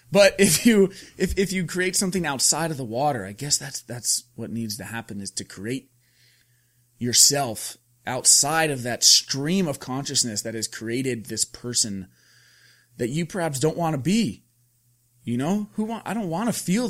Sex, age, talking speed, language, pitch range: male, 30-49, 180 wpm, English, 110-140 Hz